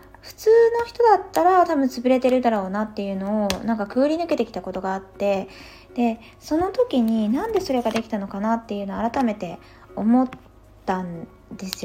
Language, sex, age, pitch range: Japanese, female, 20-39, 195-275 Hz